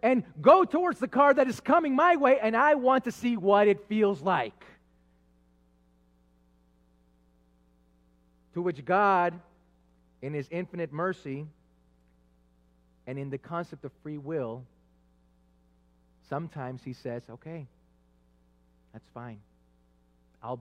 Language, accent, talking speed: English, American, 115 wpm